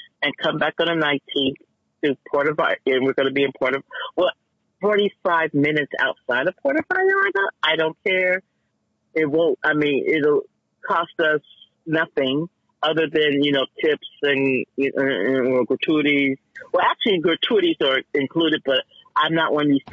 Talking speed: 180 wpm